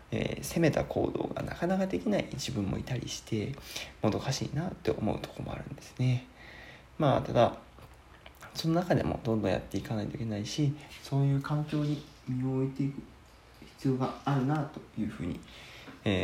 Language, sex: Japanese, male